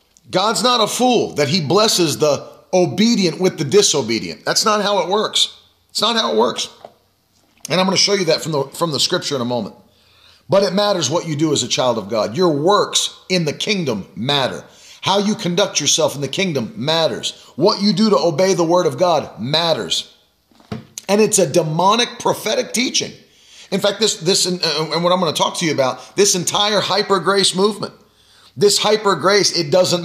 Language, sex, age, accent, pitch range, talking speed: English, male, 40-59, American, 155-200 Hz, 200 wpm